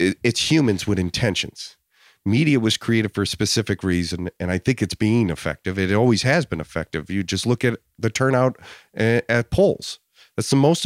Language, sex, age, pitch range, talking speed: English, male, 40-59, 95-135 Hz, 180 wpm